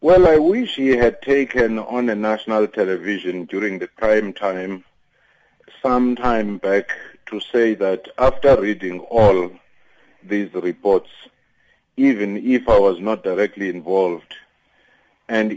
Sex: male